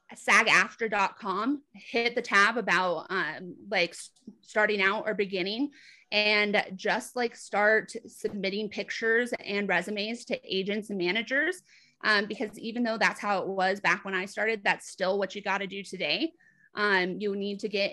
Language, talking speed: English, 160 wpm